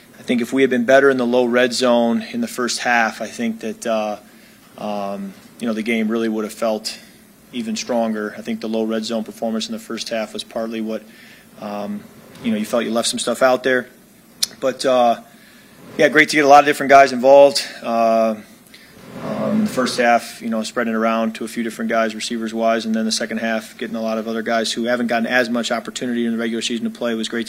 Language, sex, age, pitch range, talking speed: English, male, 30-49, 110-130 Hz, 240 wpm